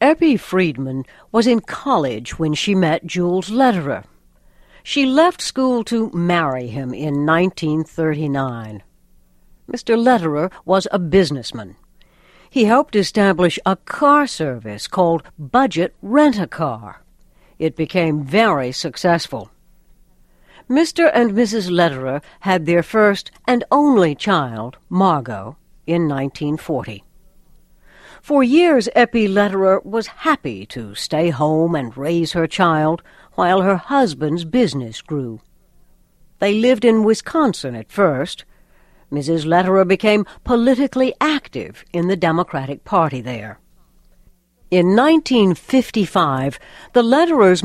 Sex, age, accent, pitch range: female, 60-79, American, 155-230 Hz